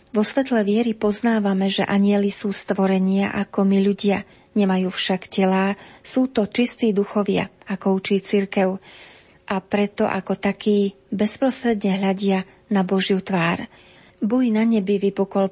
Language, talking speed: Slovak, 130 wpm